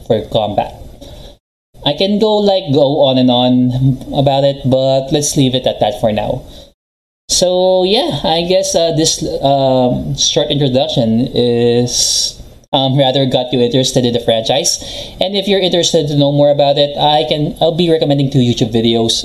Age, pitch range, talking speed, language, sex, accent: 20-39, 120-150 Hz, 170 wpm, Filipino, male, native